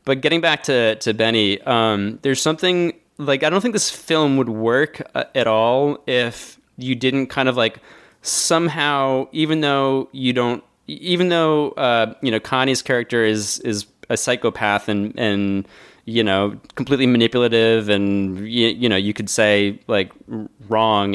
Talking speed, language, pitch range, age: 160 wpm, English, 110-135 Hz, 20-39